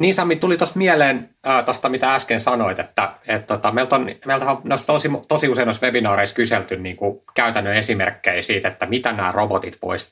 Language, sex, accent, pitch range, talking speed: Finnish, male, native, 100-120 Hz, 195 wpm